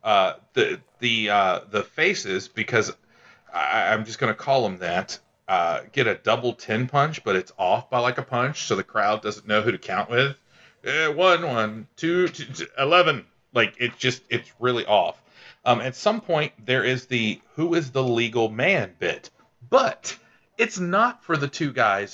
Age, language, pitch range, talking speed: 40-59, English, 110-140 Hz, 190 wpm